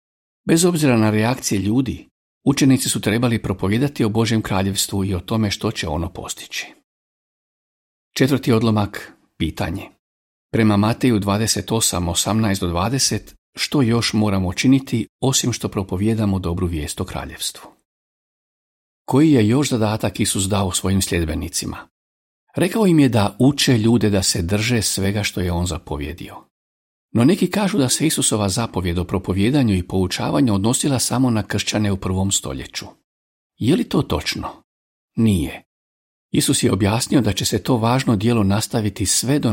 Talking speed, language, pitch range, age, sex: 140 wpm, Croatian, 95-125 Hz, 50-69, male